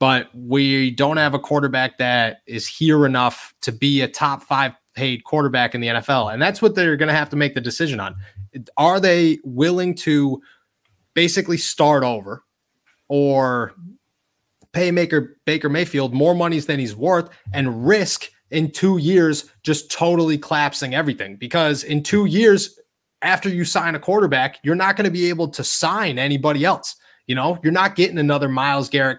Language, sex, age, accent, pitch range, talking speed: English, male, 30-49, American, 130-170 Hz, 175 wpm